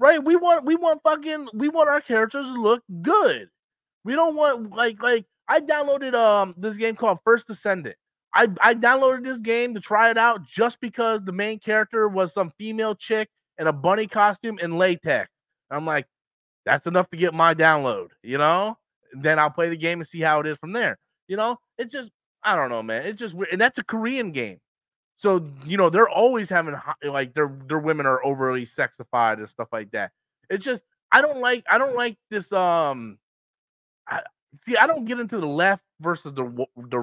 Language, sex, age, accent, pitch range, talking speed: English, male, 20-39, American, 155-235 Hz, 205 wpm